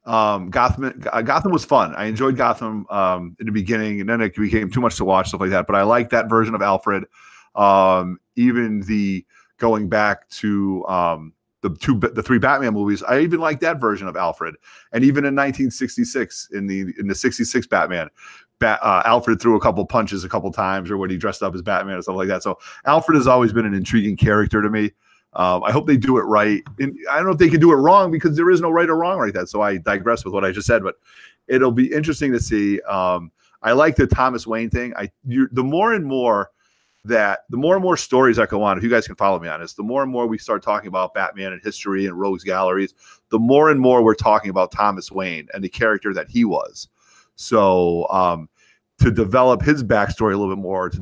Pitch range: 95-130 Hz